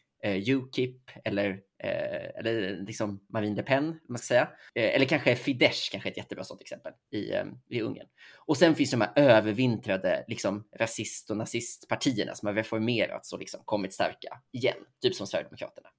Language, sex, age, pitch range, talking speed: Swedish, male, 20-39, 105-135 Hz, 175 wpm